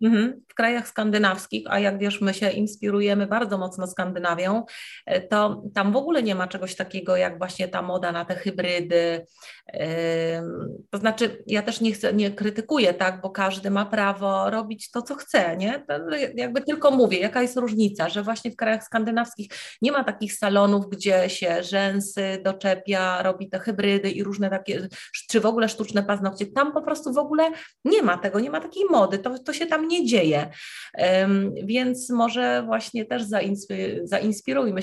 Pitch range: 185-220 Hz